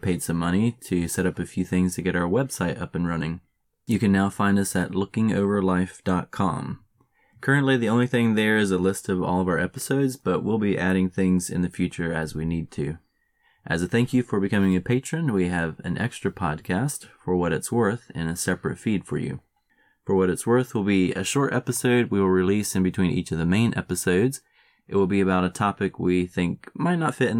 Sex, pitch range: male, 90-110 Hz